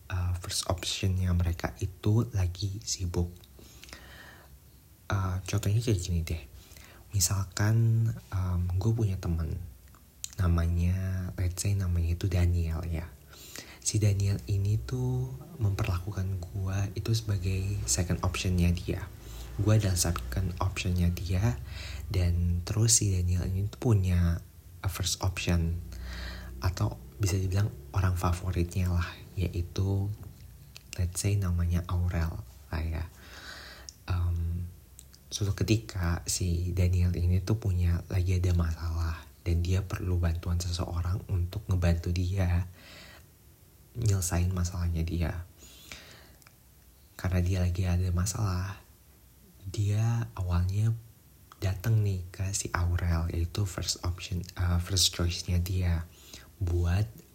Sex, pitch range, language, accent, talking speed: male, 85-100 Hz, Indonesian, native, 110 wpm